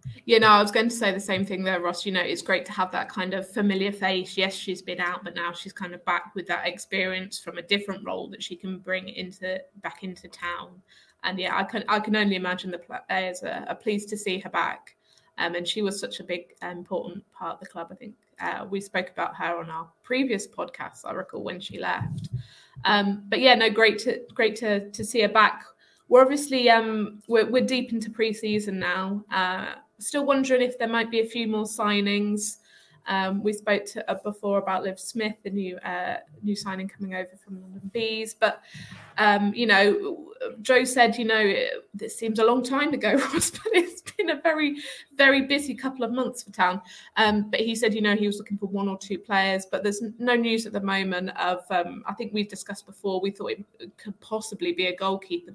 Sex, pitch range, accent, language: female, 185-225 Hz, British, English